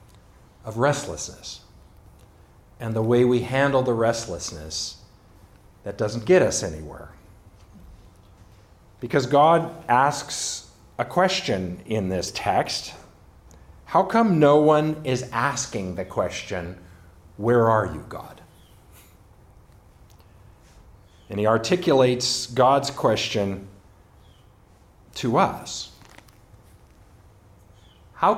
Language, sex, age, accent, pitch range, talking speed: English, male, 50-69, American, 100-155 Hz, 90 wpm